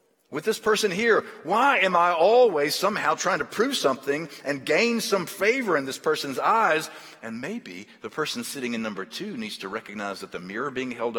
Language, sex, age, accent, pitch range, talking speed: English, male, 50-69, American, 150-225 Hz, 200 wpm